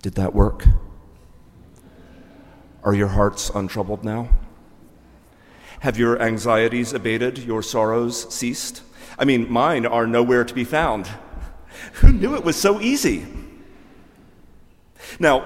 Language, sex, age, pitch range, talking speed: English, male, 40-59, 100-155 Hz, 115 wpm